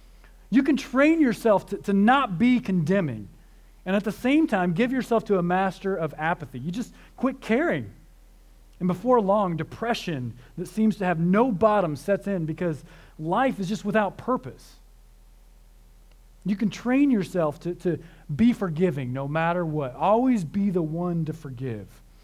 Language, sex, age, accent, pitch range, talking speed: English, male, 40-59, American, 140-210 Hz, 160 wpm